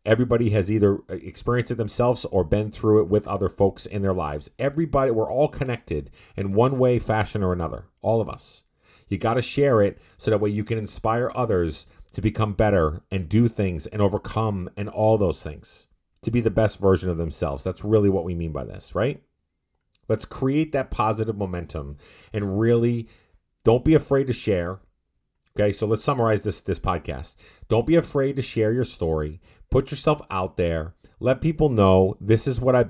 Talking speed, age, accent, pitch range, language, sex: 190 wpm, 40-59, American, 95-120 Hz, English, male